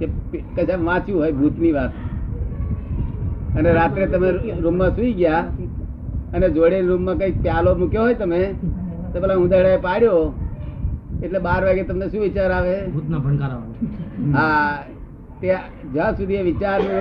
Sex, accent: male, native